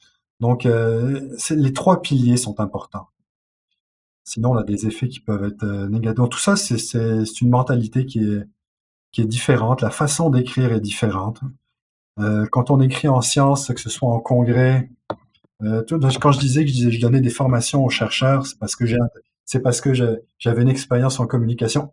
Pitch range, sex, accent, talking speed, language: 115-140 Hz, male, French, 195 wpm, French